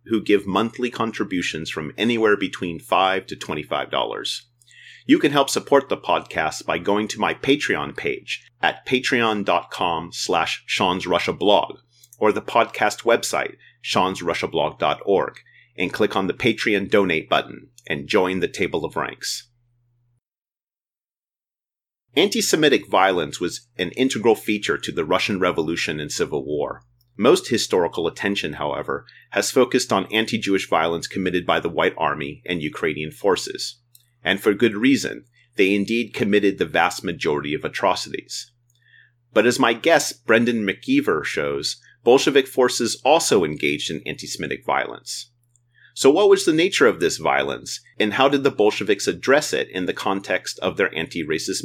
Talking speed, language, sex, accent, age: 140 wpm, English, male, American, 30-49